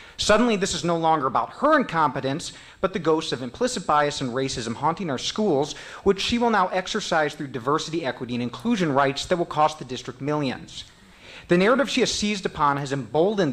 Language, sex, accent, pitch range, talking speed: English, male, American, 130-185 Hz, 195 wpm